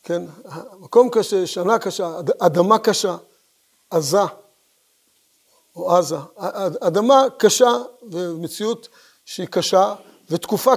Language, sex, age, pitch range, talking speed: Hebrew, male, 50-69, 190-260 Hz, 95 wpm